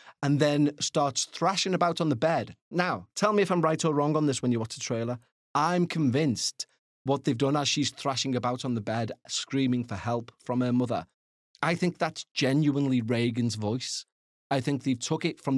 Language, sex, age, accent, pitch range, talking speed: English, male, 30-49, British, 120-140 Hz, 205 wpm